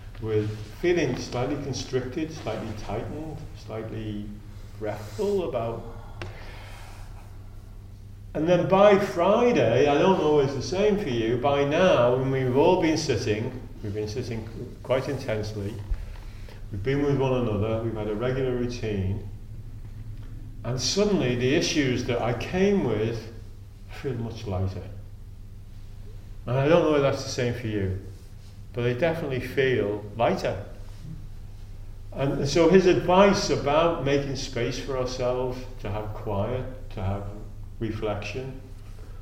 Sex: male